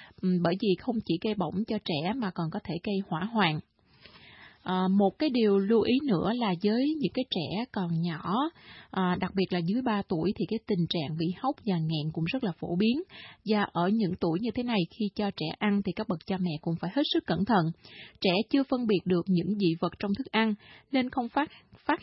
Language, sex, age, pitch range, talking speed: Vietnamese, female, 20-39, 180-225 Hz, 235 wpm